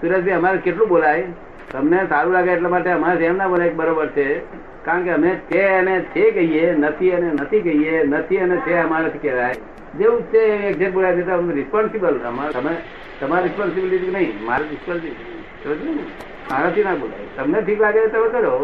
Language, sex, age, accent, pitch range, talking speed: Gujarati, male, 60-79, native, 165-195 Hz, 40 wpm